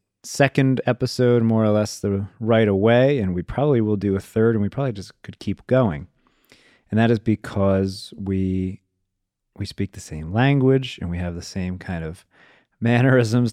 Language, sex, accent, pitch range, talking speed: English, male, American, 95-125 Hz, 175 wpm